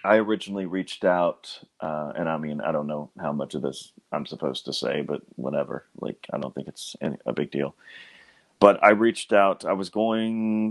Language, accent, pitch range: English, American, 75-95 Hz